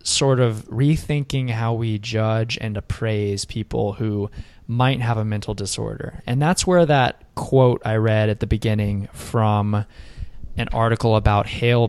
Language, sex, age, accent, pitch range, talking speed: English, male, 20-39, American, 105-120 Hz, 150 wpm